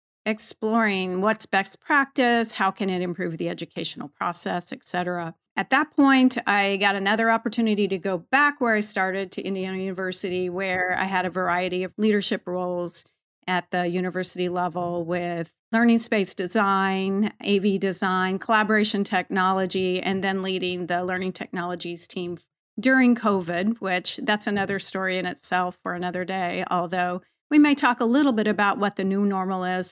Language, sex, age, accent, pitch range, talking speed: English, female, 40-59, American, 185-225 Hz, 160 wpm